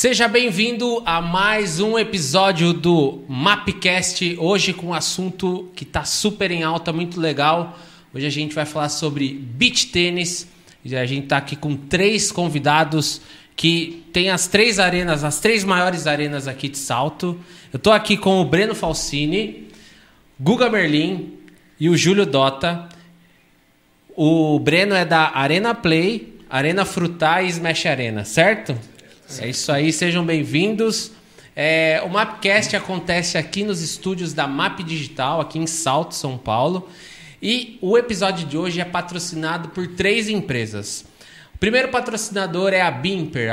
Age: 20-39